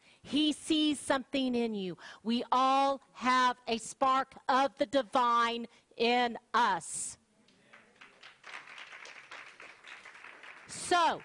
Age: 40-59